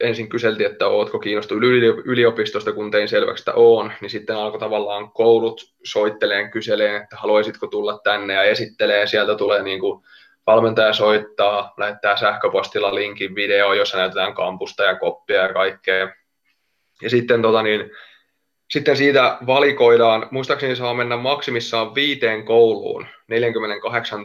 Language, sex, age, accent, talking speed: Finnish, male, 20-39, native, 120 wpm